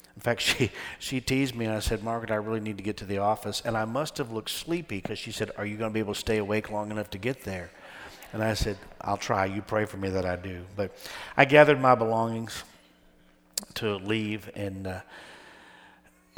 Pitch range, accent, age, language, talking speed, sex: 105-140 Hz, American, 50-69, English, 225 wpm, male